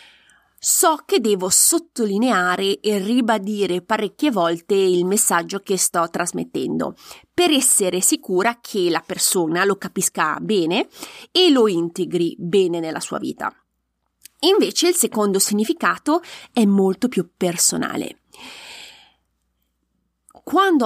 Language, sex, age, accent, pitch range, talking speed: Italian, female, 20-39, native, 185-275 Hz, 110 wpm